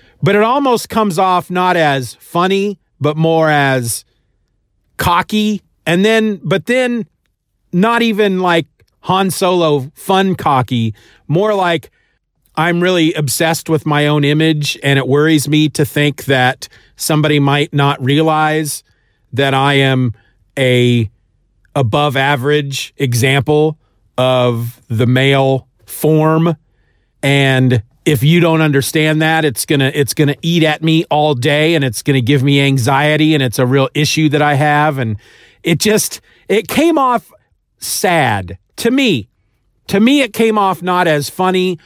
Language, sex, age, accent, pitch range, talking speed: English, male, 40-59, American, 130-175 Hz, 145 wpm